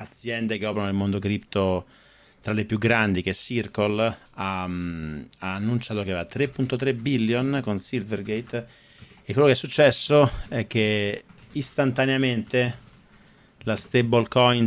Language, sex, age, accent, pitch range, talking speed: Italian, male, 40-59, native, 90-125 Hz, 130 wpm